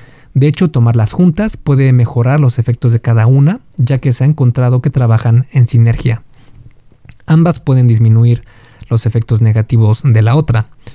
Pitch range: 115-140 Hz